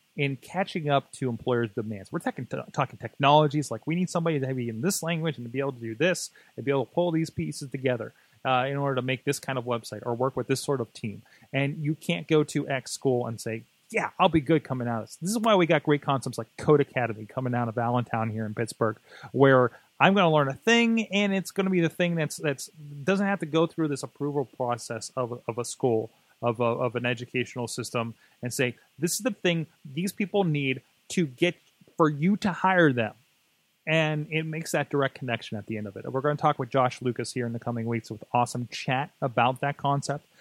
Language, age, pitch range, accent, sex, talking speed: English, 30-49, 125-165 Hz, American, male, 240 wpm